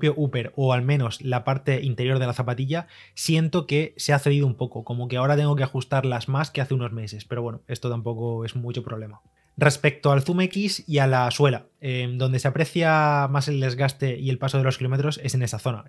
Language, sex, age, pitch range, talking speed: Spanish, male, 20-39, 125-150 Hz, 225 wpm